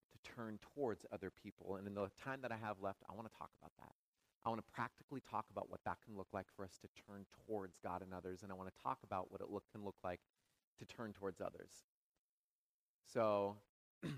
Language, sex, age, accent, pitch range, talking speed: English, male, 30-49, American, 110-140 Hz, 230 wpm